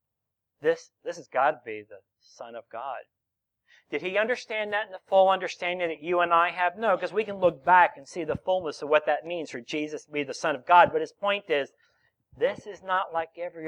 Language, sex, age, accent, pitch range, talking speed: English, male, 50-69, American, 135-200 Hz, 235 wpm